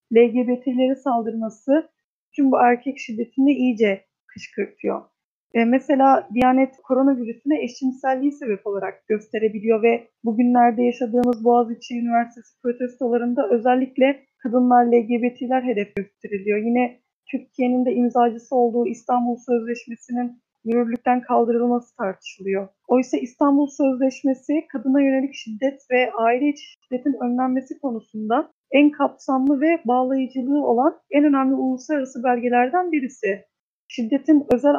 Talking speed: 105 wpm